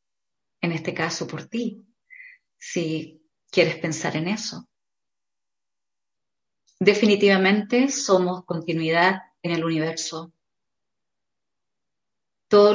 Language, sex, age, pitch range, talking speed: Spanish, female, 30-49, 170-210 Hz, 80 wpm